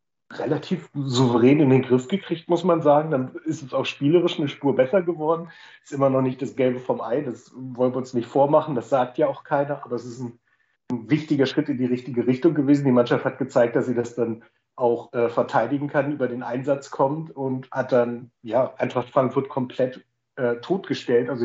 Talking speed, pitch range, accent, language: 205 wpm, 120-140 Hz, German, German